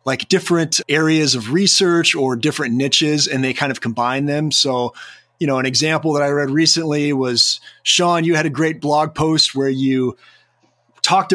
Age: 30-49